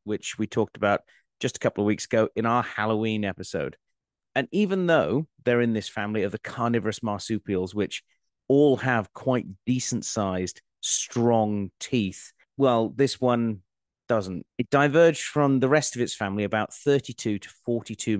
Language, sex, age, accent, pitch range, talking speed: English, male, 30-49, British, 95-120 Hz, 160 wpm